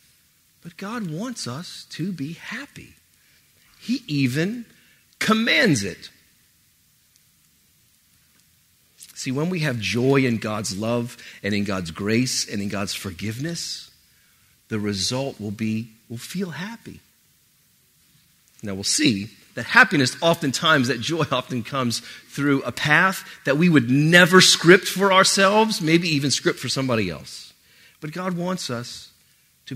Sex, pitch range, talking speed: male, 105-145 Hz, 130 wpm